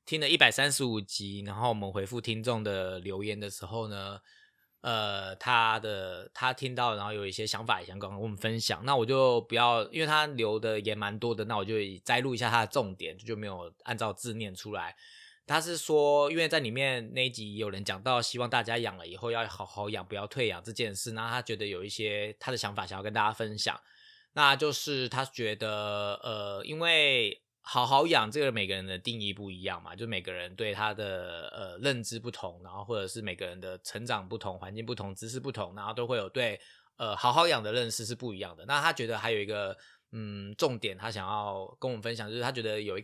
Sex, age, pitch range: male, 20-39, 100-125 Hz